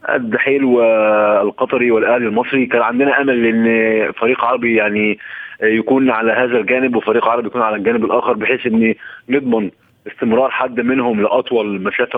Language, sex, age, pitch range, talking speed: Arabic, male, 20-39, 110-130 Hz, 150 wpm